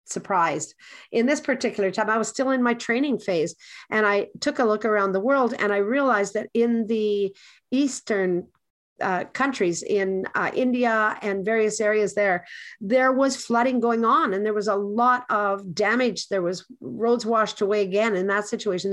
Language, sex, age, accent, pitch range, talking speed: English, female, 50-69, American, 205-245 Hz, 180 wpm